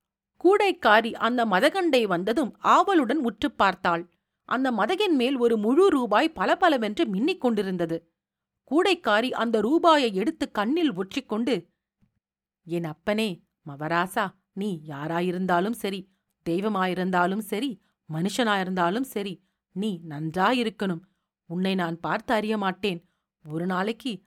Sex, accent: female, native